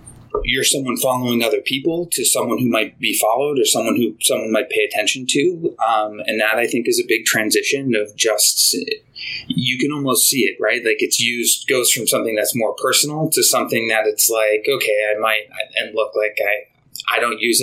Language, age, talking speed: English, 20-39, 205 wpm